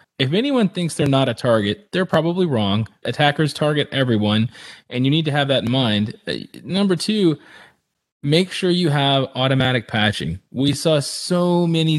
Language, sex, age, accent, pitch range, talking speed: English, male, 20-39, American, 125-160 Hz, 165 wpm